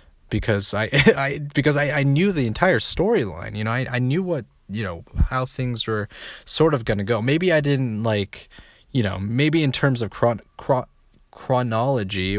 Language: English